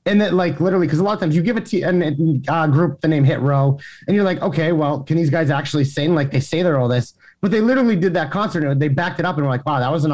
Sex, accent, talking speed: male, American, 315 wpm